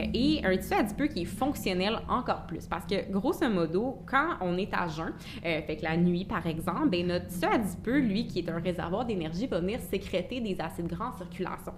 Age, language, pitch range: 20-39, French, 175-225 Hz